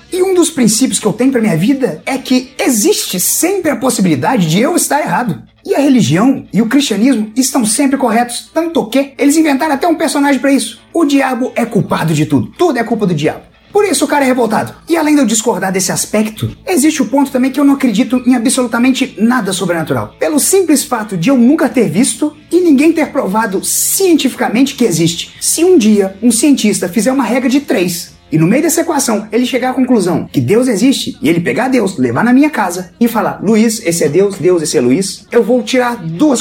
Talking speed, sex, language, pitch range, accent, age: 220 wpm, male, Portuguese, 205-280 Hz, Brazilian, 30-49